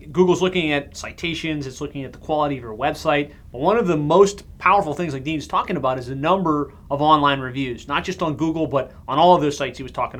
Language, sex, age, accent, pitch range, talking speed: English, male, 30-49, American, 135-155 Hz, 245 wpm